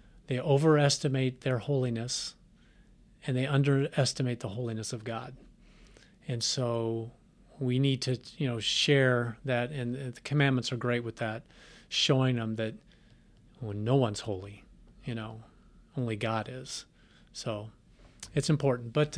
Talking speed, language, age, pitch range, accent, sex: 135 wpm, English, 40-59, 120-140 Hz, American, male